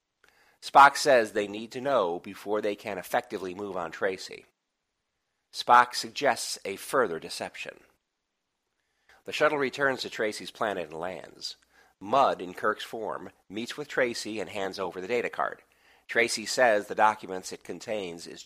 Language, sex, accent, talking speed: English, male, American, 150 wpm